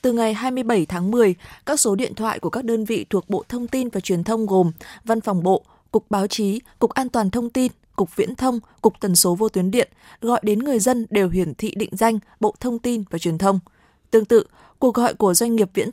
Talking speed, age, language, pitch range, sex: 240 wpm, 20-39, Vietnamese, 195-235 Hz, female